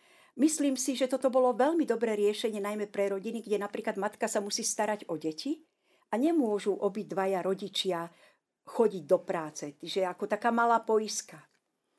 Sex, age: female, 50-69